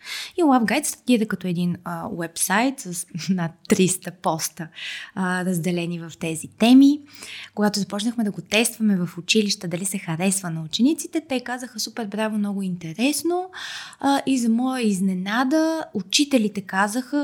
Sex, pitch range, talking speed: female, 185-235 Hz, 140 wpm